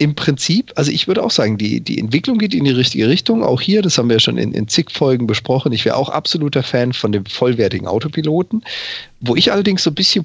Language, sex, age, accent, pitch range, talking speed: German, male, 40-59, German, 120-160 Hz, 240 wpm